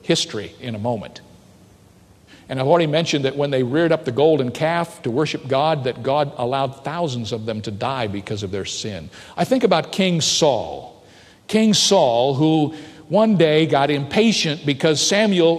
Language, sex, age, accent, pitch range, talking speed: English, male, 50-69, American, 125-185 Hz, 175 wpm